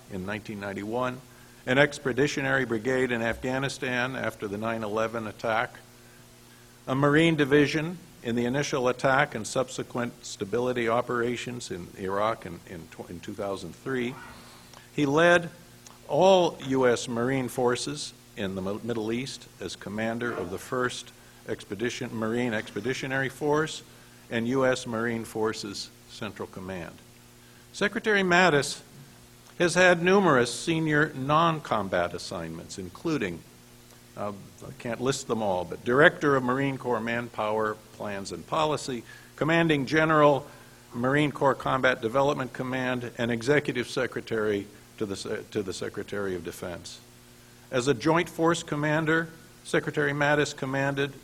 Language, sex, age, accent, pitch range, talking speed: English, male, 50-69, American, 110-145 Hz, 115 wpm